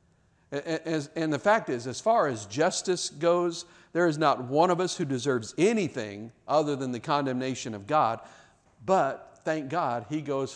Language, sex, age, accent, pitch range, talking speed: English, male, 50-69, American, 120-155 Hz, 165 wpm